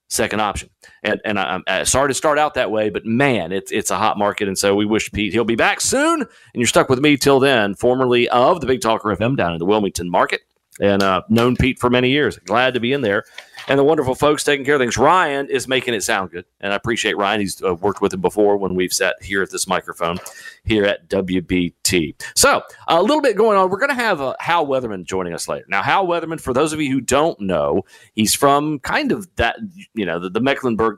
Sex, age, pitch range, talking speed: male, 40-59, 105-145 Hz, 250 wpm